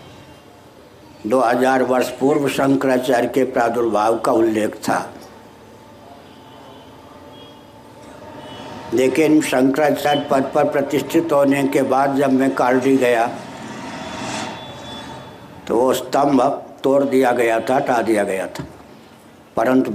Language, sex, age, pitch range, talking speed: Hindi, male, 60-79, 120-140 Hz, 105 wpm